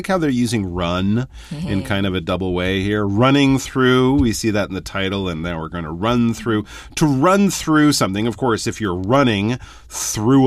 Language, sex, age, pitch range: Chinese, male, 30-49, 90-130 Hz